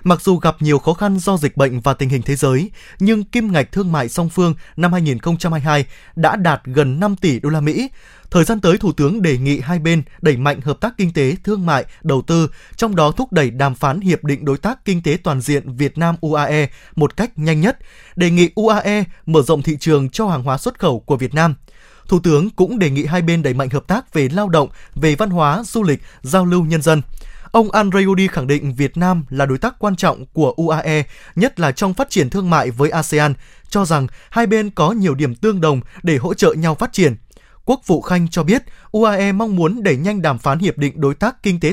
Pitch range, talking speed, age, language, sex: 145-185 Hz, 235 wpm, 20-39, Vietnamese, male